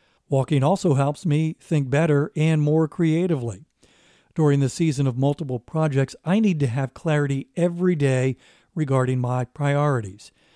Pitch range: 135-165 Hz